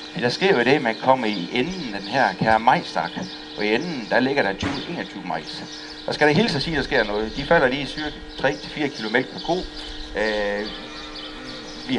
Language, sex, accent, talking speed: Danish, male, native, 215 wpm